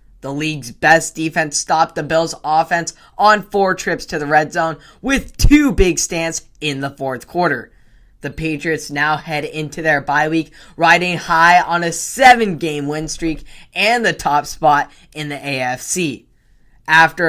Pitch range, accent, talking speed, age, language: 145-165 Hz, American, 160 wpm, 10-29, English